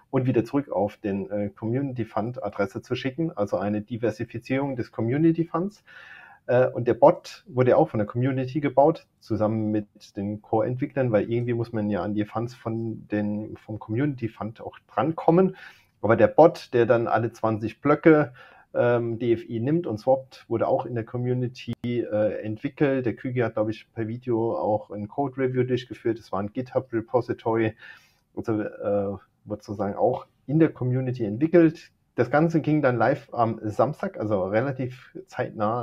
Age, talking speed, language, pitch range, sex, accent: 40-59, 160 wpm, German, 110-135 Hz, male, German